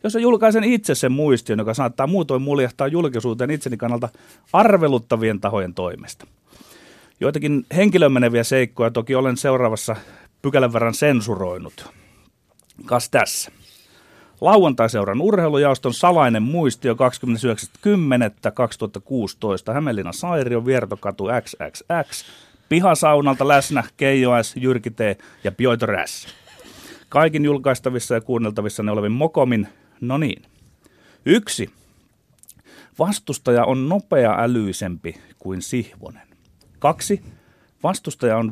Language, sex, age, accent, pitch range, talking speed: Finnish, male, 30-49, native, 110-150 Hz, 95 wpm